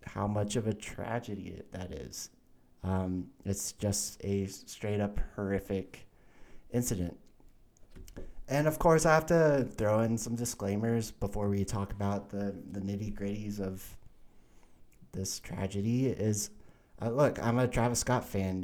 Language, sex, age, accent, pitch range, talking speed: English, male, 30-49, American, 95-115 Hz, 140 wpm